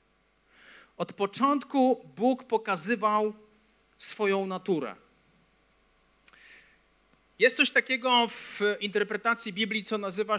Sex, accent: male, native